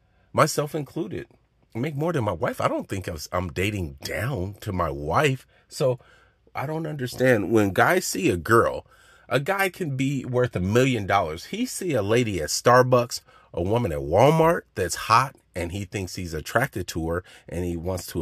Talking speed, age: 195 wpm, 40-59